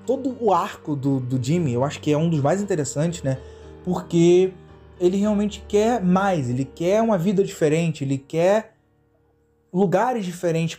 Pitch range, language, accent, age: 135-185 Hz, Portuguese, Brazilian, 20-39